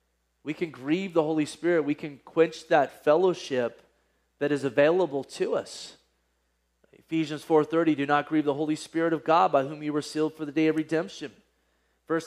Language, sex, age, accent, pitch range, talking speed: English, male, 30-49, American, 125-150 Hz, 180 wpm